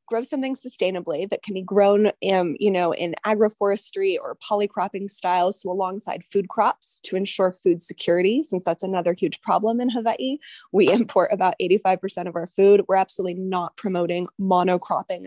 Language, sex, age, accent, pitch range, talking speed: English, female, 20-39, American, 180-220 Hz, 165 wpm